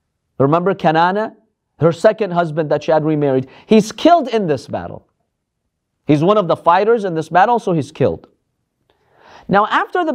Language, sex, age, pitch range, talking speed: English, male, 40-59, 155-230 Hz, 165 wpm